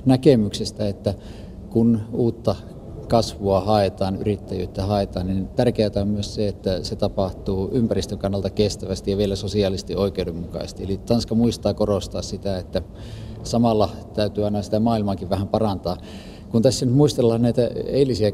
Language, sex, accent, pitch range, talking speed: Finnish, male, native, 100-115 Hz, 135 wpm